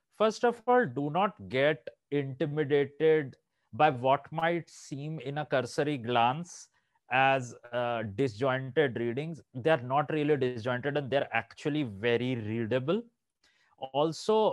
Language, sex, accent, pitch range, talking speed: English, male, Indian, 130-165 Hz, 130 wpm